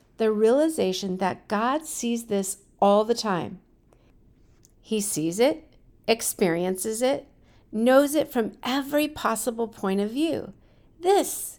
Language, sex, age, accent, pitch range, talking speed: English, female, 50-69, American, 200-280 Hz, 120 wpm